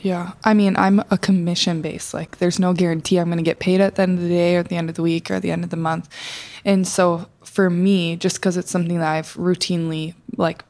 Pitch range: 170-195 Hz